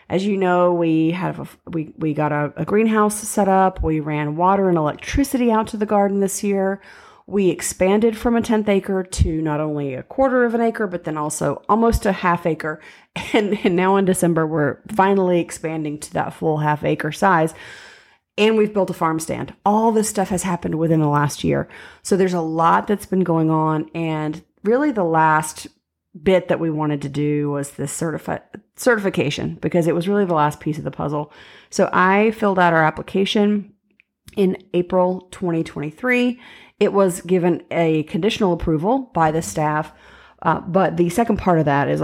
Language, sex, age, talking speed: English, female, 30-49, 190 wpm